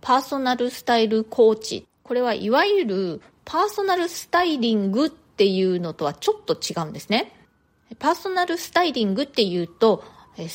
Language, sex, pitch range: Japanese, female, 185-275 Hz